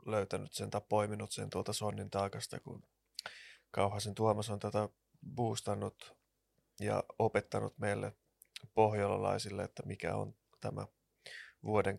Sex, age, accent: male, 20-39, native